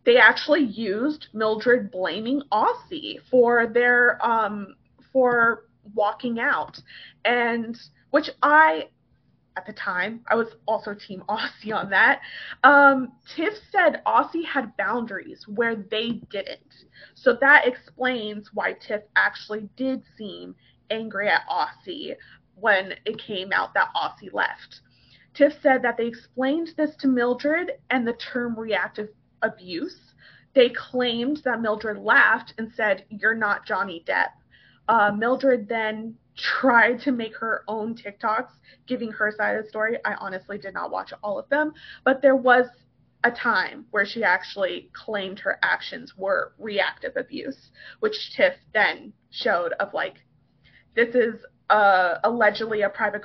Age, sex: 20-39, female